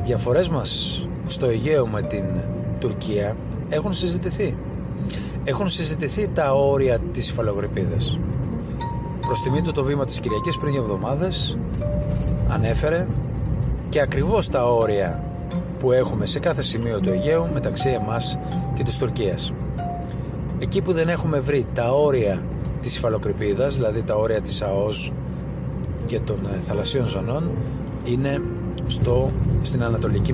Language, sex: Greek, male